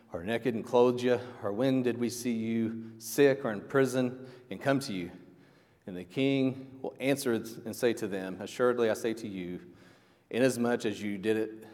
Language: English